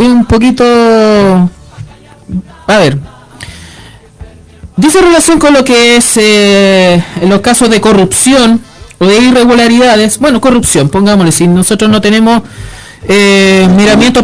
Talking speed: 120 wpm